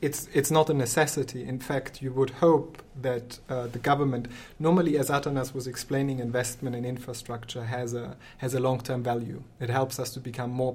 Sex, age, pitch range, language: male, 30-49, 125-145 Hz, English